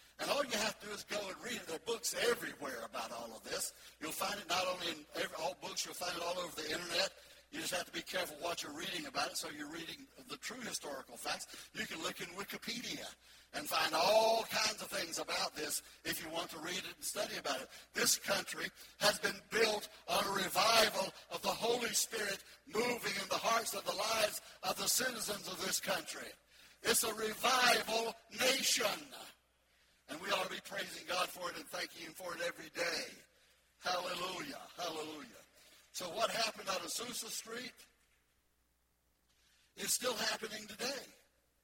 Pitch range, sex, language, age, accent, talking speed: 175-235 Hz, male, English, 60-79, American, 190 wpm